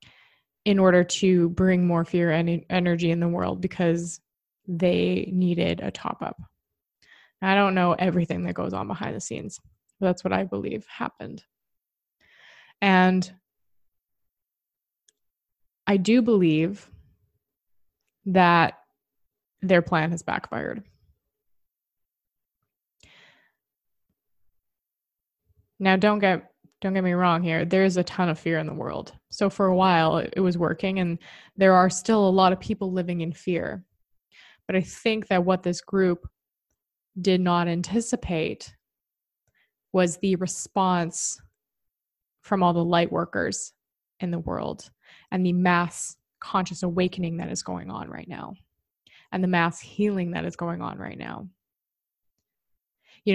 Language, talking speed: English, 135 wpm